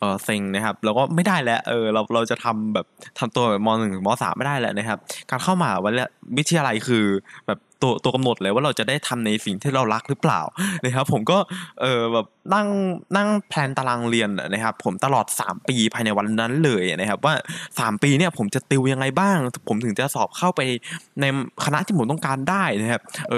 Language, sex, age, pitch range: Thai, male, 20-39, 115-175 Hz